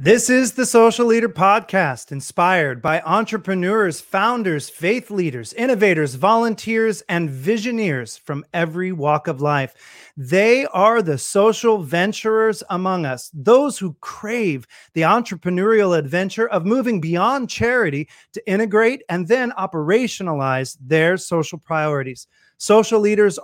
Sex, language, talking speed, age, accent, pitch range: male, English, 125 wpm, 30-49, American, 160-220 Hz